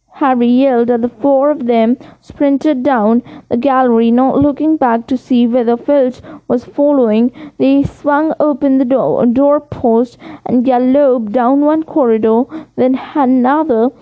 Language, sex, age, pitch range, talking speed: English, female, 20-39, 240-285 Hz, 140 wpm